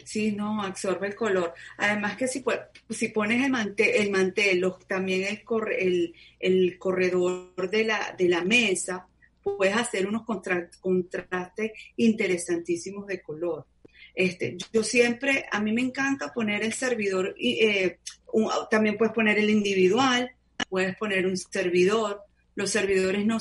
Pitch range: 180-225 Hz